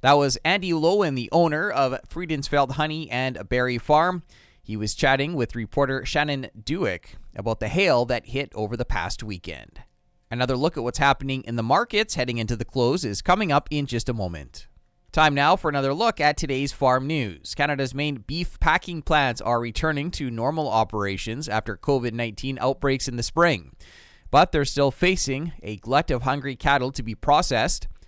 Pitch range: 110-145 Hz